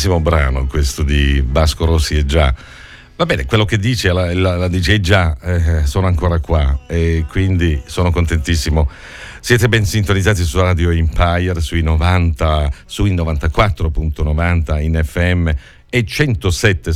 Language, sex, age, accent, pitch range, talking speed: Italian, male, 50-69, native, 80-110 Hz, 140 wpm